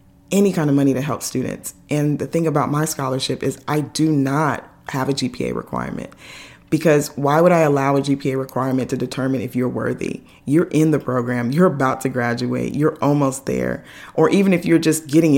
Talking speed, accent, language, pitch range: 200 wpm, American, English, 130-150 Hz